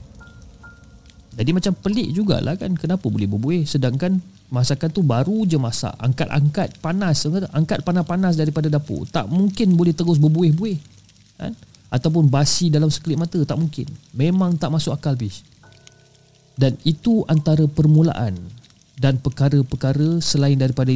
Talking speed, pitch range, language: 130 wpm, 120-155 Hz, Malay